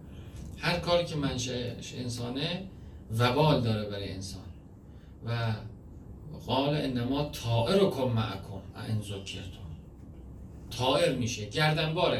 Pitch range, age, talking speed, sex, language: 100-150 Hz, 50-69, 95 wpm, male, Persian